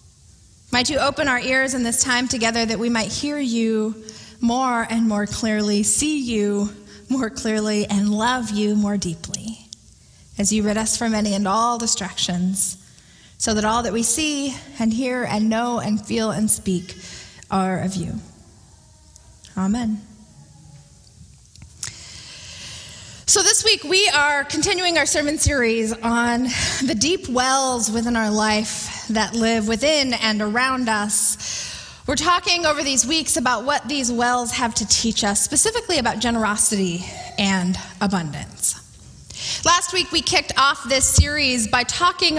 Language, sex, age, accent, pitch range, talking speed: English, female, 20-39, American, 215-280 Hz, 145 wpm